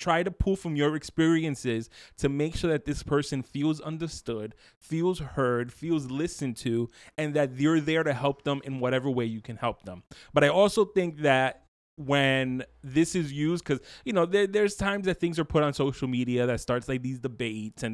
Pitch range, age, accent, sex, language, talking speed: 130-160 Hz, 20-39, American, male, English, 205 wpm